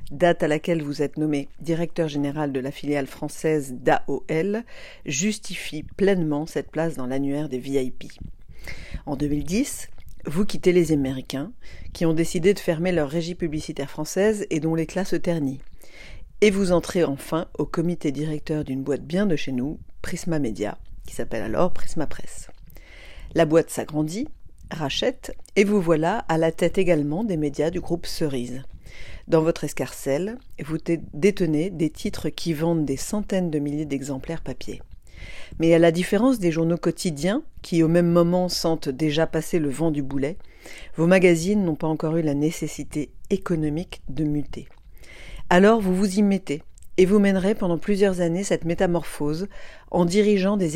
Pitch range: 150-180 Hz